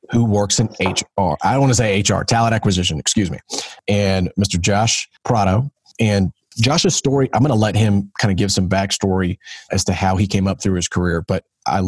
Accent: American